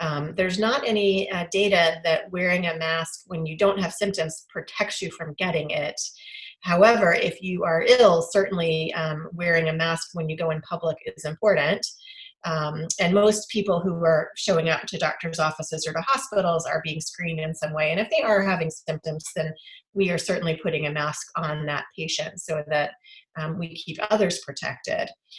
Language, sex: English, female